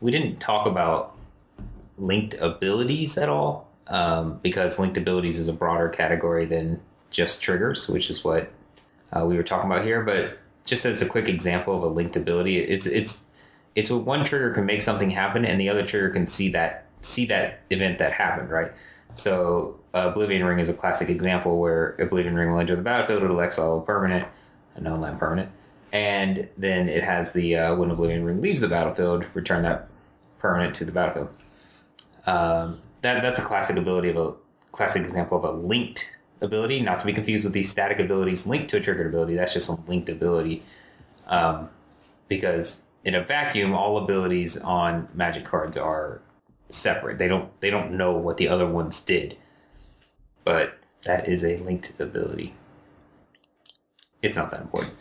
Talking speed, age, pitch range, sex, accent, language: 180 wpm, 20-39, 85-100 Hz, male, American, English